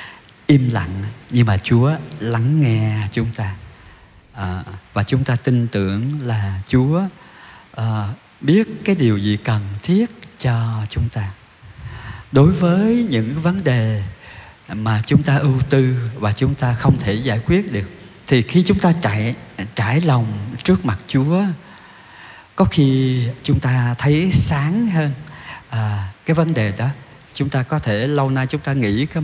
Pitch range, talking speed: 110-145 Hz, 150 wpm